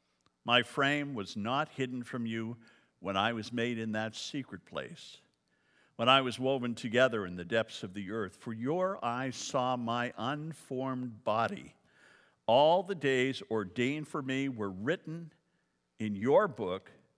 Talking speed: 155 wpm